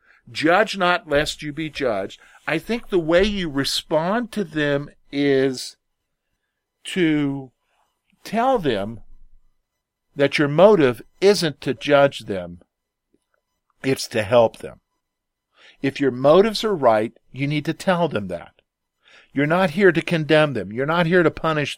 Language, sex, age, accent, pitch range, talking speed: English, male, 50-69, American, 130-175 Hz, 140 wpm